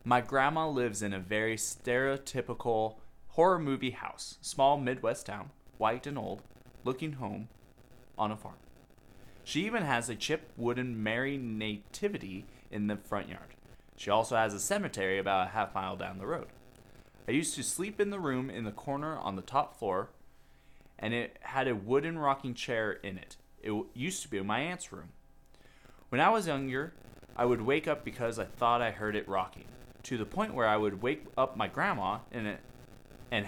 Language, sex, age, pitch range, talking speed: English, male, 20-39, 105-140 Hz, 180 wpm